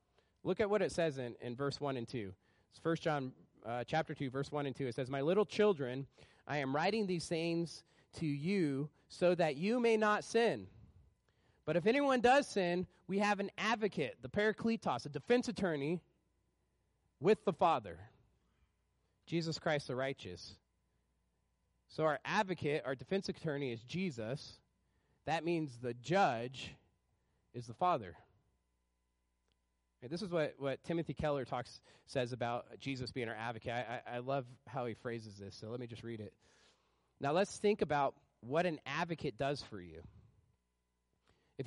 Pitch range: 115-175 Hz